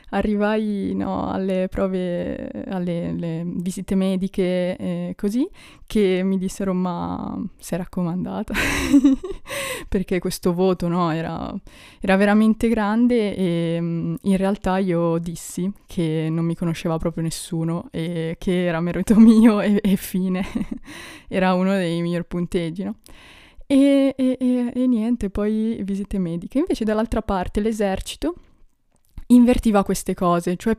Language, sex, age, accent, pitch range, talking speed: Italian, female, 20-39, native, 175-220 Hz, 125 wpm